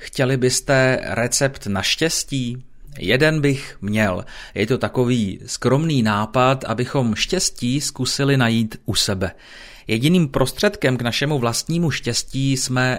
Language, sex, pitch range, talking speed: Czech, male, 115-140 Hz, 120 wpm